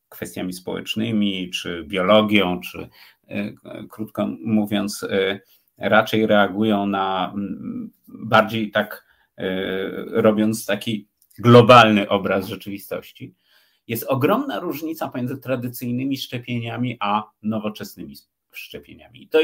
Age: 50-69